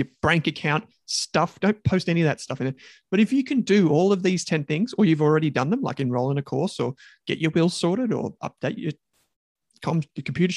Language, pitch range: English, 145-200 Hz